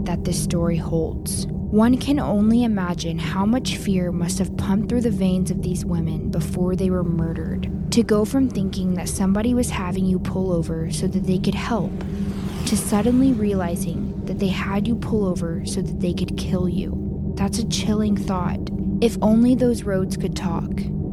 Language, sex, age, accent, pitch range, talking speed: English, female, 20-39, American, 180-210 Hz, 185 wpm